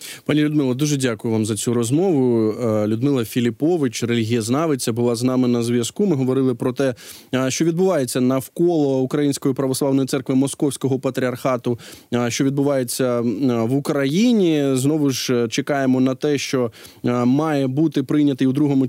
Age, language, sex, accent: 20-39, Ukrainian, male, native